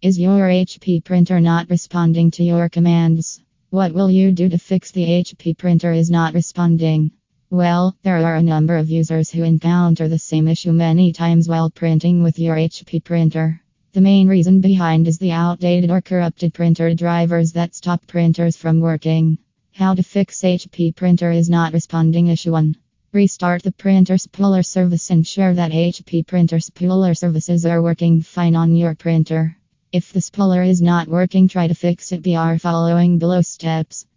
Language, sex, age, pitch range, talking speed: English, female, 20-39, 165-180 Hz, 175 wpm